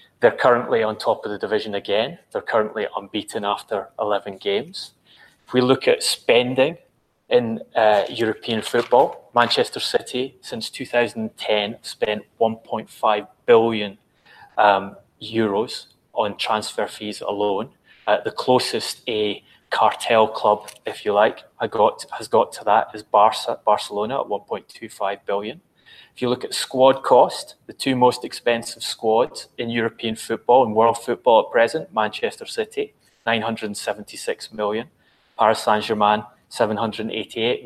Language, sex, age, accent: English, male, 20-39, British